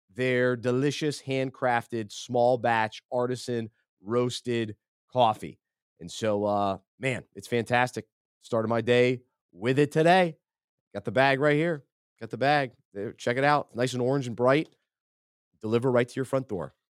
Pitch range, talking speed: 120-155 Hz, 145 wpm